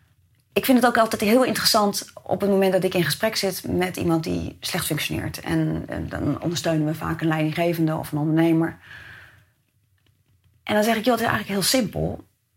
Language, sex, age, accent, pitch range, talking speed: Dutch, female, 30-49, Dutch, 155-235 Hz, 195 wpm